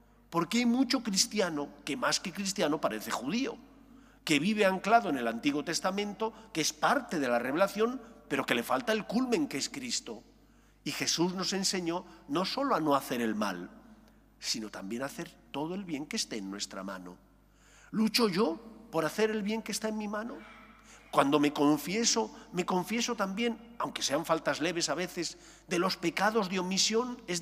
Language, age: English, 50-69